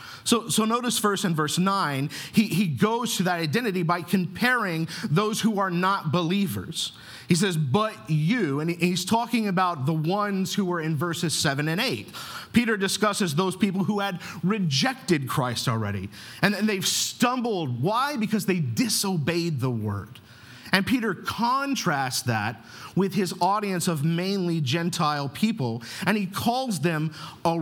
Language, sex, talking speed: English, male, 155 wpm